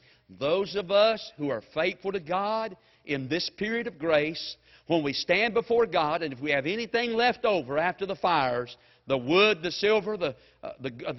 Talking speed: 180 wpm